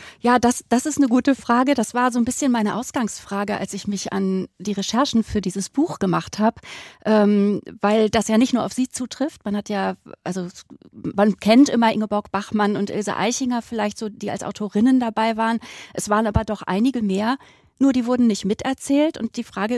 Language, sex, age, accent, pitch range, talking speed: German, female, 30-49, German, 205-240 Hz, 205 wpm